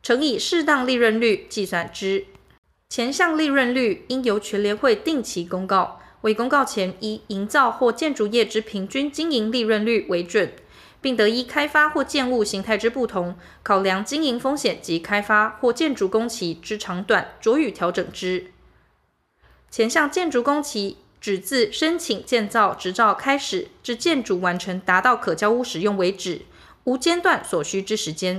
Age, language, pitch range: 20-39, Chinese, 195-270 Hz